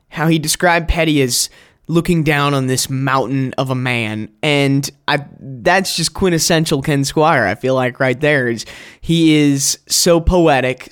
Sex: male